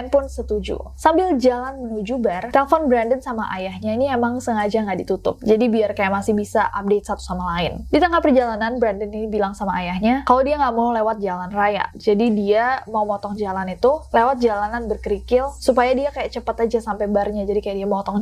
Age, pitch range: 10-29, 205-250 Hz